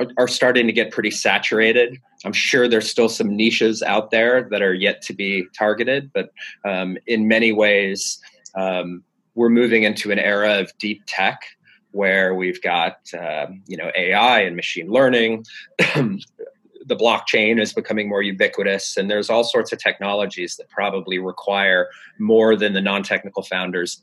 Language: English